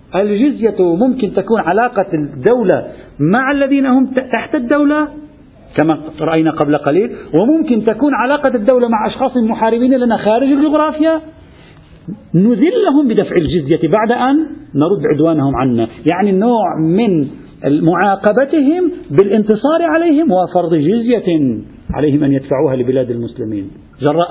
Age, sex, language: 50-69, male, Arabic